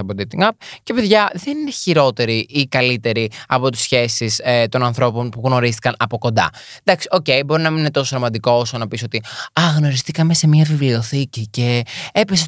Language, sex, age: Greek, male, 20-39